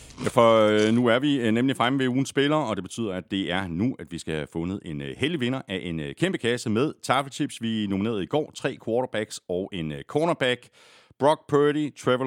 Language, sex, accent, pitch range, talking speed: Danish, male, native, 95-135 Hz, 205 wpm